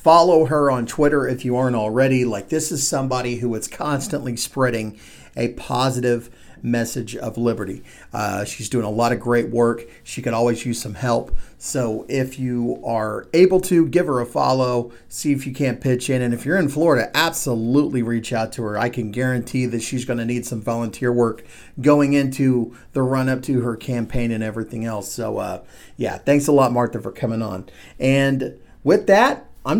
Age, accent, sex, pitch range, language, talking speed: 40-59, American, male, 120-145 Hz, English, 190 wpm